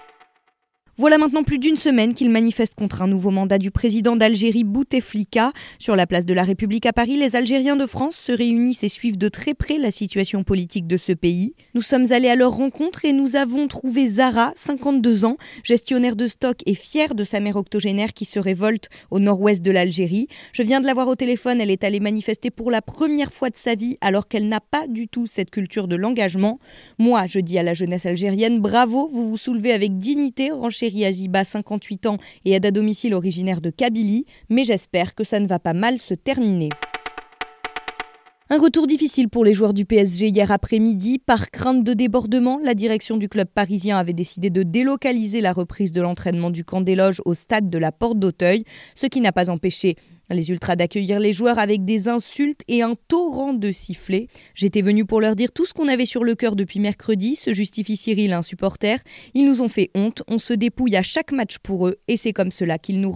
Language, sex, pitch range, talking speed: French, female, 190-245 Hz, 215 wpm